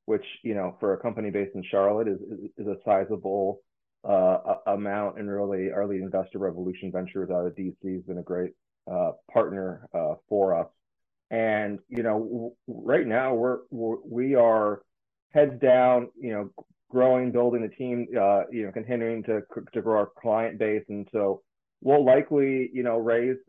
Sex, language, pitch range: male, English, 95-120 Hz